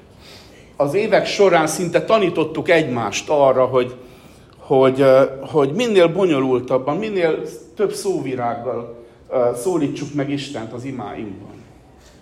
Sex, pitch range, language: male, 130-175 Hz, Hungarian